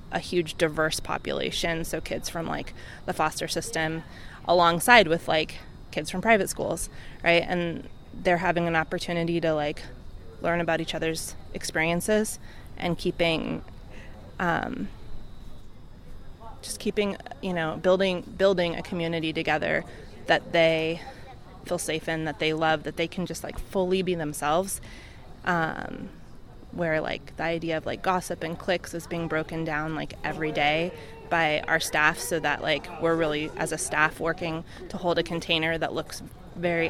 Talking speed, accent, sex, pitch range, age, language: 155 wpm, American, female, 155-175 Hz, 20-39, English